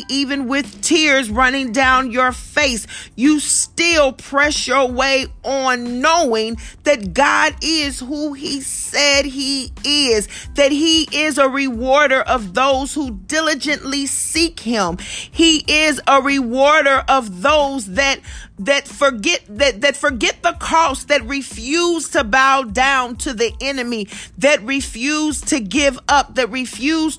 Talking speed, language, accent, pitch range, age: 135 wpm, English, American, 250-285 Hz, 40-59